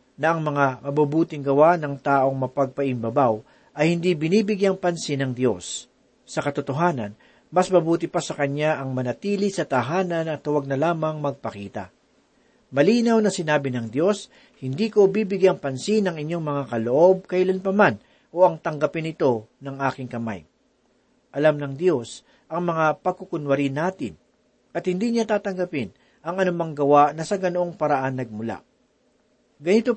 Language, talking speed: Filipino, 140 wpm